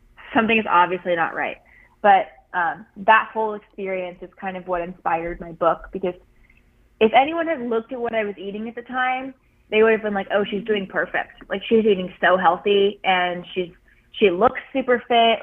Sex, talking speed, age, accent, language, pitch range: female, 195 wpm, 20-39, American, English, 180-215 Hz